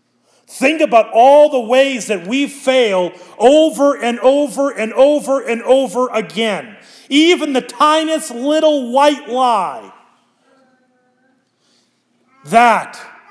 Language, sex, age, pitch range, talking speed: English, male, 30-49, 205-270 Hz, 105 wpm